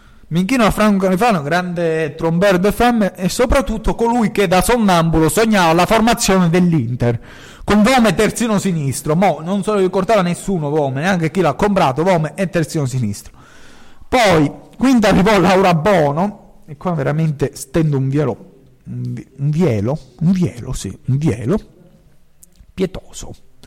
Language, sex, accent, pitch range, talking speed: Italian, male, native, 135-200 Hz, 150 wpm